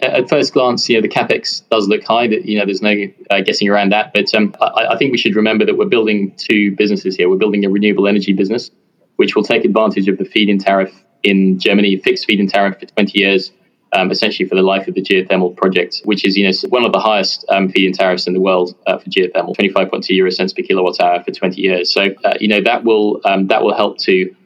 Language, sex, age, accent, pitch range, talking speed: English, male, 20-39, British, 95-105 Hz, 260 wpm